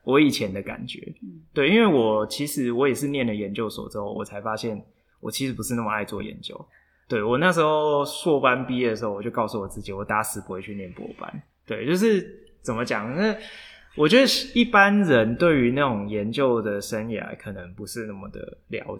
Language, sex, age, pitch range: Chinese, male, 20-39, 105-145 Hz